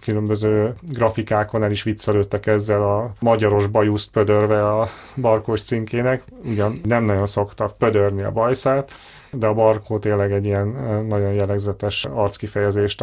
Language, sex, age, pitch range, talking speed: Hungarian, male, 30-49, 105-120 Hz, 135 wpm